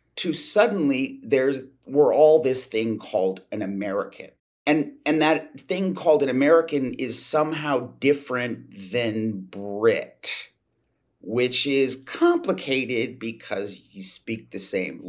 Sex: male